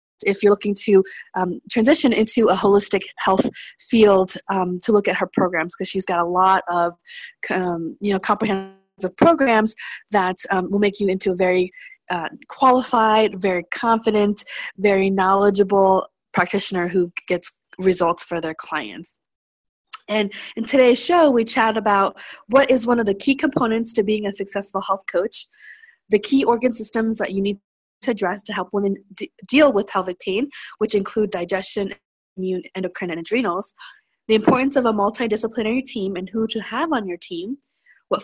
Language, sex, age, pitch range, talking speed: English, female, 20-39, 190-230 Hz, 165 wpm